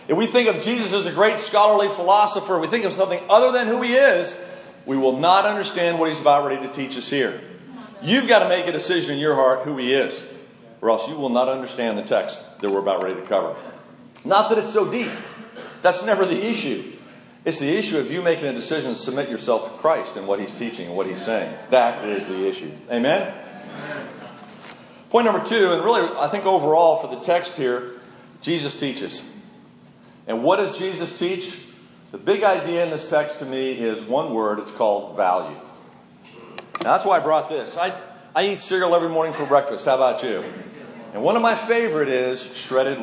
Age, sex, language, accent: 40-59, male, English, American